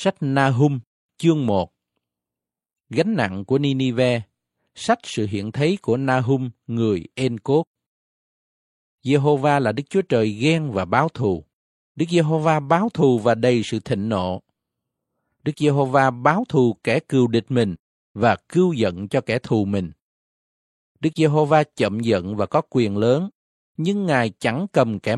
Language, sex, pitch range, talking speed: Vietnamese, male, 110-155 Hz, 150 wpm